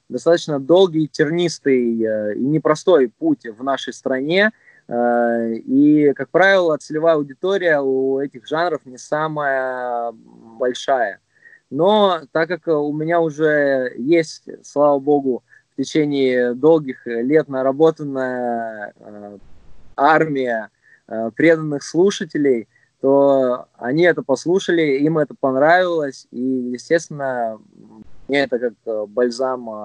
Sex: male